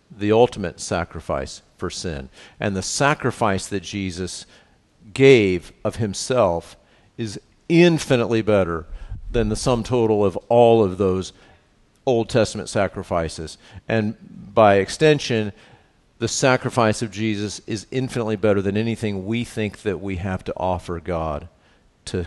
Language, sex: English, male